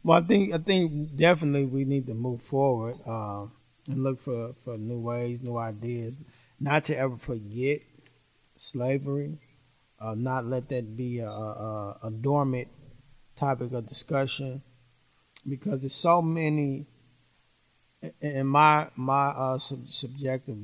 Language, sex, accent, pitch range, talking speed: English, male, American, 120-150 Hz, 135 wpm